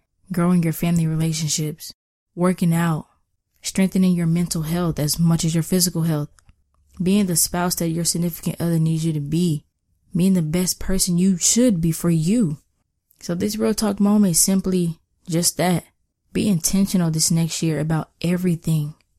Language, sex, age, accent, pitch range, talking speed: English, female, 20-39, American, 155-185 Hz, 165 wpm